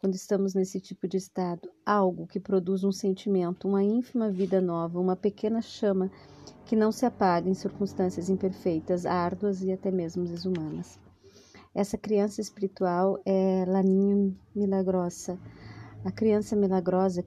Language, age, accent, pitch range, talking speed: Portuguese, 40-59, Brazilian, 180-200 Hz, 135 wpm